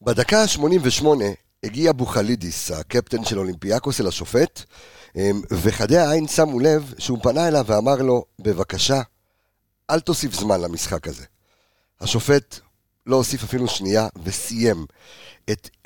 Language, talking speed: Hebrew, 115 wpm